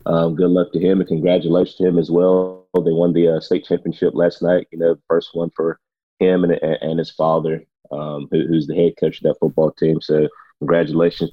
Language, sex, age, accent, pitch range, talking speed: English, male, 30-49, American, 80-85 Hz, 215 wpm